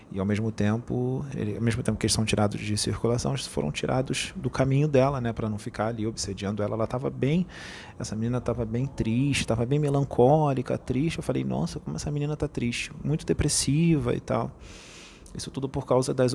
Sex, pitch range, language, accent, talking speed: male, 110-140 Hz, Portuguese, Brazilian, 205 wpm